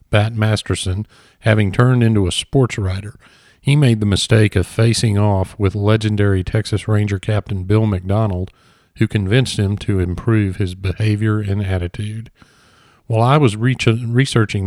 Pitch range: 100-115 Hz